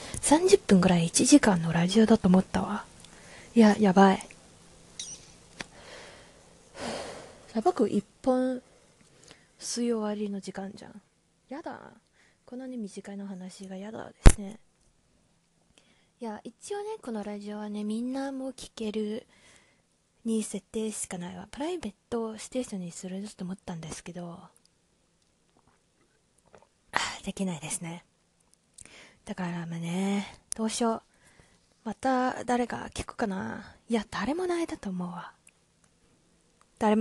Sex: female